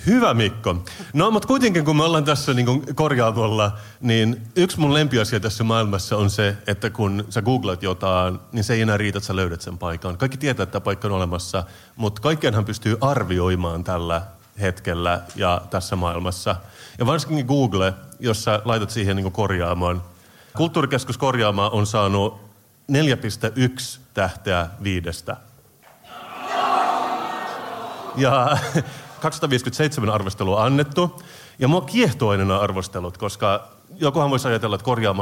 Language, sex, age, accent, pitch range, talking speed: Finnish, male, 30-49, native, 95-130 Hz, 135 wpm